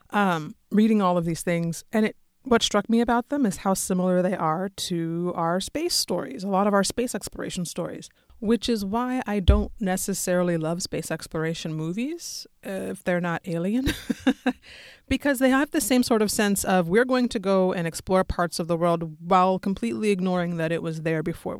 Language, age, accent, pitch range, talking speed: English, 30-49, American, 170-210 Hz, 195 wpm